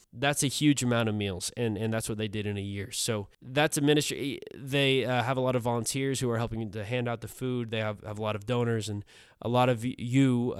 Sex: male